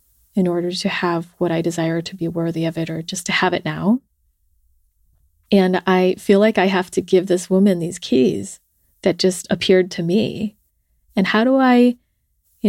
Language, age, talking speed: English, 30-49, 190 wpm